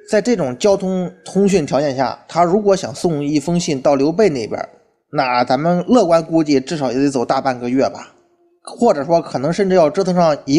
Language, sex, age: Chinese, male, 20-39